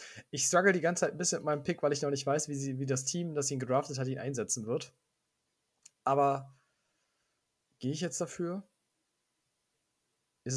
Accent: German